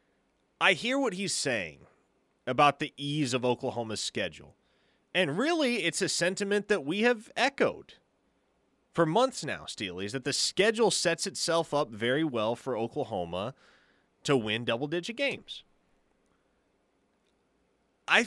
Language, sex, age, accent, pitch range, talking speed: English, male, 30-49, American, 130-185 Hz, 130 wpm